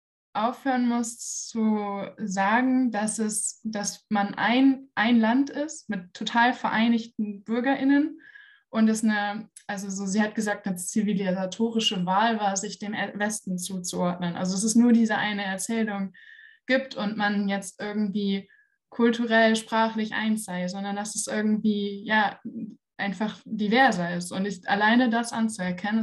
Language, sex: German, female